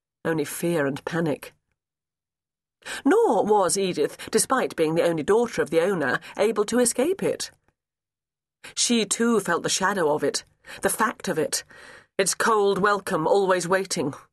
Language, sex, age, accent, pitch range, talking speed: English, female, 40-59, British, 170-245 Hz, 145 wpm